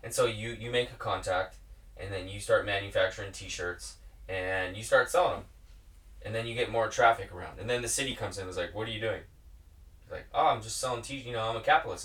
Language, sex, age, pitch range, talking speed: English, male, 20-39, 100-135 Hz, 250 wpm